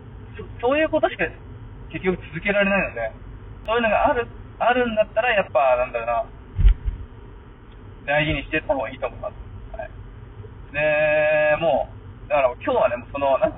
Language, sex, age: Japanese, male, 20-39